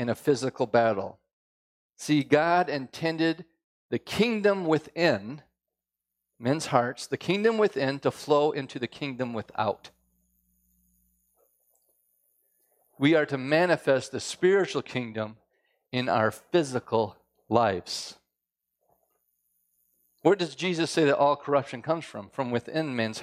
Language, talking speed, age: English, 115 wpm, 40-59